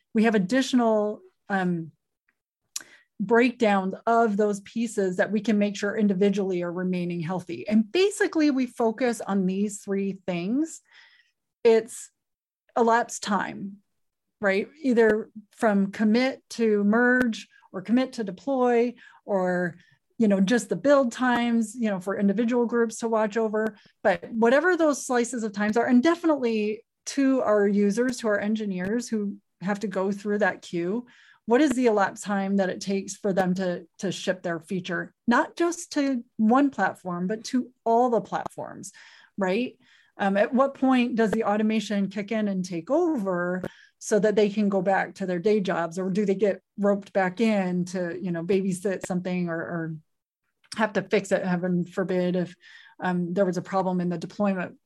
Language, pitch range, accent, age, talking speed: English, 190-235 Hz, American, 30-49, 165 wpm